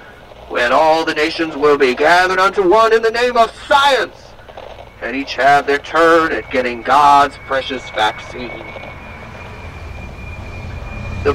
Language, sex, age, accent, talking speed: English, male, 40-59, American, 130 wpm